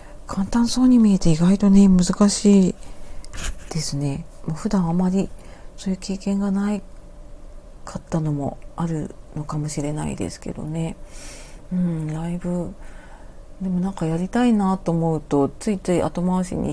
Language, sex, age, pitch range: Japanese, female, 40-59, 150-190 Hz